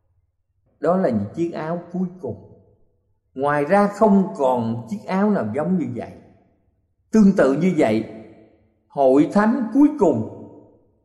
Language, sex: Thai, male